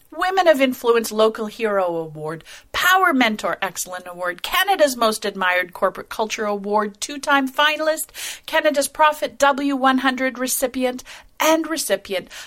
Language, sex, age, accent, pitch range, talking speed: English, female, 40-59, American, 190-265 Hz, 115 wpm